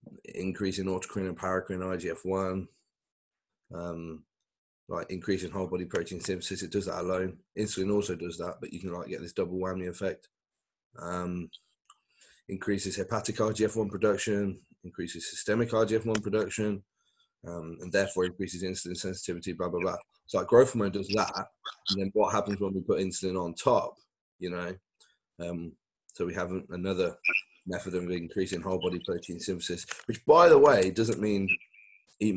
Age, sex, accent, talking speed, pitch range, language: 20-39, male, British, 155 wpm, 95-110 Hz, English